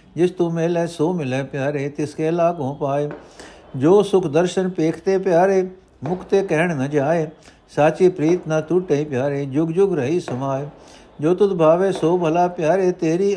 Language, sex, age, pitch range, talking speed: Punjabi, male, 60-79, 145-180 Hz, 160 wpm